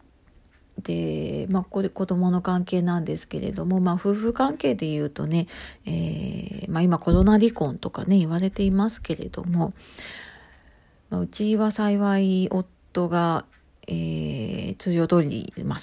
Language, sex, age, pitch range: Japanese, female, 40-59, 160-215 Hz